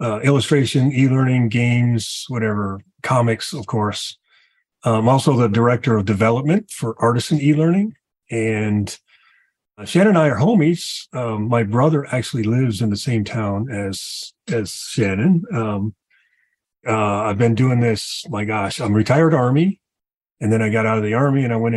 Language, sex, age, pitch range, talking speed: English, male, 40-59, 110-140 Hz, 160 wpm